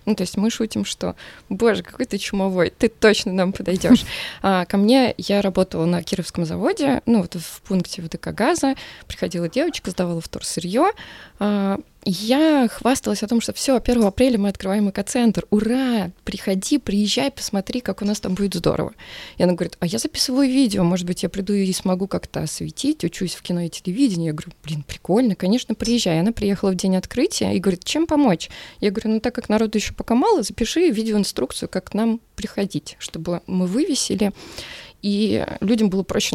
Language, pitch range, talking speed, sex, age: Russian, 185-235 Hz, 185 wpm, female, 20-39